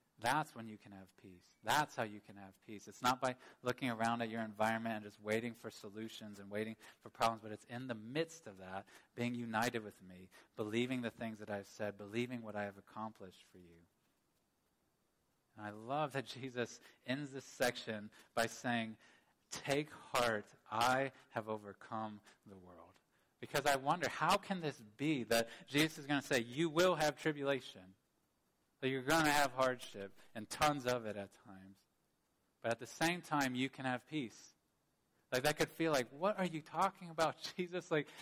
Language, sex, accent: English, male, American